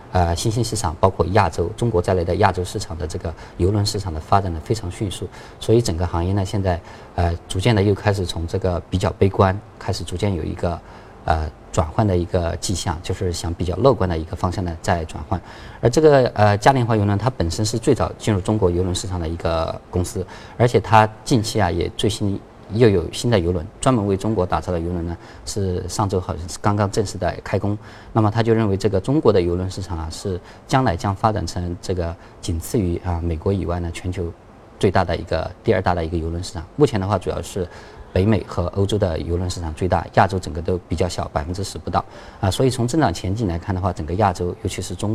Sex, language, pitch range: male, Chinese, 90-110 Hz